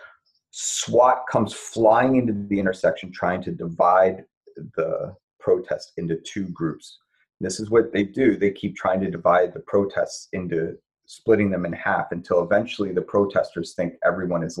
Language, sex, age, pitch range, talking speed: English, male, 30-49, 90-115 Hz, 155 wpm